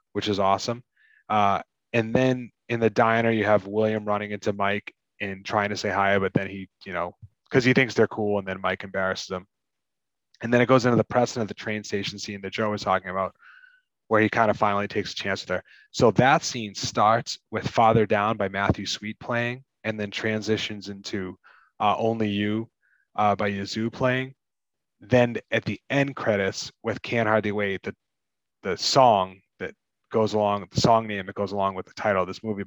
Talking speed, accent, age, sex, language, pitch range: 200 wpm, American, 20-39, male, English, 100-120 Hz